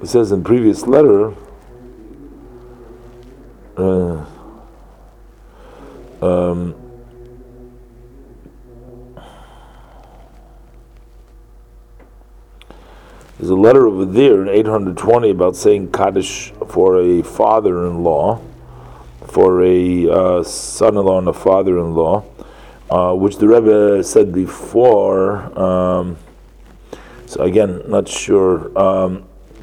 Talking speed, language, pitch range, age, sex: 95 wpm, English, 95-125 Hz, 50-69, male